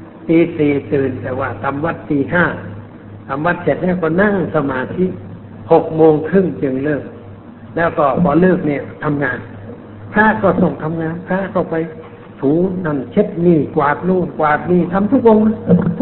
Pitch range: 150-190 Hz